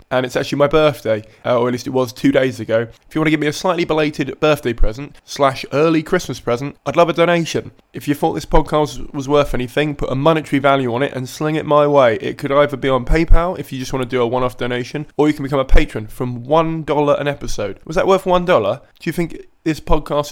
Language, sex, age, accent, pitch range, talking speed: English, male, 20-39, British, 125-155 Hz, 250 wpm